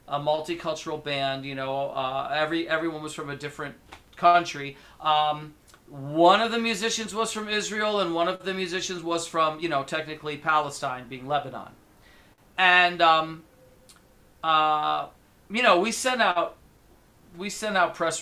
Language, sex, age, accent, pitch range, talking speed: English, male, 40-59, American, 140-185 Hz, 150 wpm